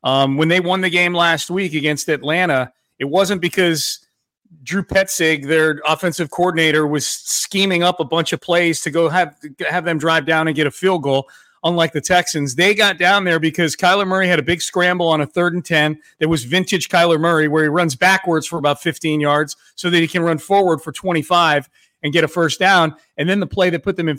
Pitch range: 145-180 Hz